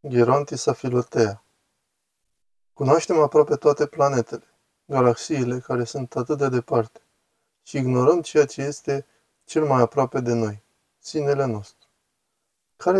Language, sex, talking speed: Romanian, male, 115 wpm